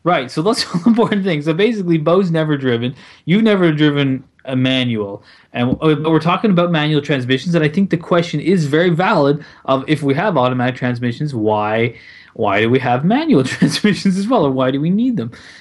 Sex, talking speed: male, 195 wpm